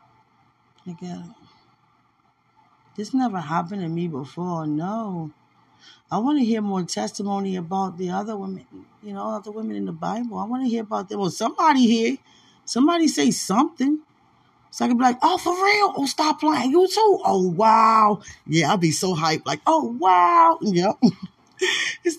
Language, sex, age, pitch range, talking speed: English, female, 20-39, 185-275 Hz, 175 wpm